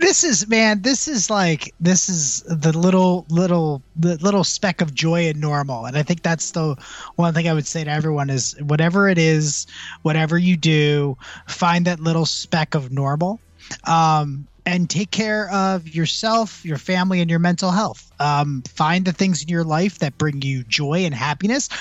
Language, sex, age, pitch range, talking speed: English, male, 20-39, 150-185 Hz, 185 wpm